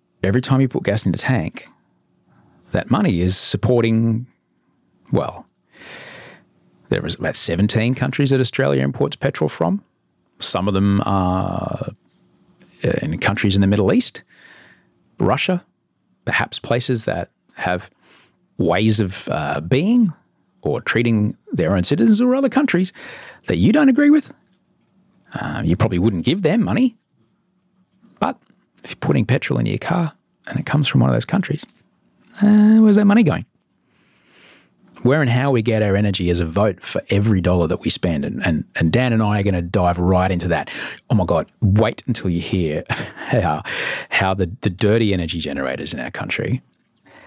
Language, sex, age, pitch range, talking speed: English, male, 40-59, 90-145 Hz, 160 wpm